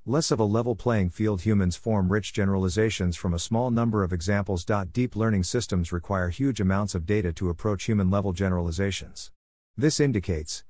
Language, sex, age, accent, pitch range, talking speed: English, male, 50-69, American, 90-115 Hz, 175 wpm